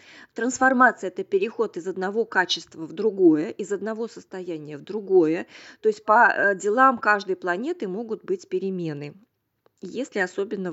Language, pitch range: Russian, 185-260 Hz